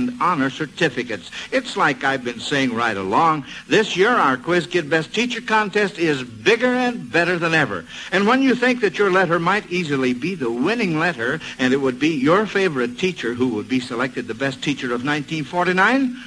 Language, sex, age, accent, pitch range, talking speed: English, male, 60-79, American, 145-210 Hz, 190 wpm